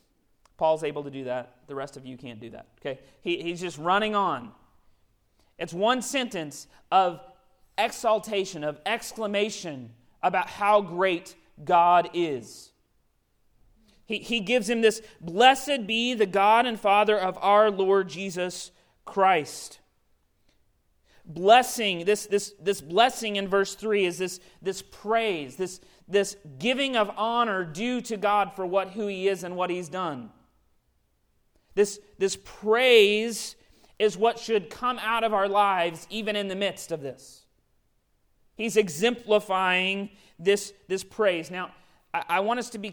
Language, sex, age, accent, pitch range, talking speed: English, male, 40-59, American, 175-215 Hz, 145 wpm